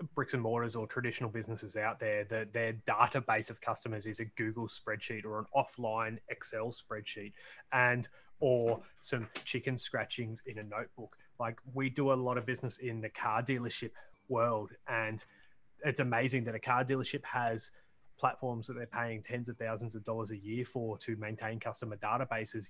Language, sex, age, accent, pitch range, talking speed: English, male, 20-39, Australian, 115-130 Hz, 175 wpm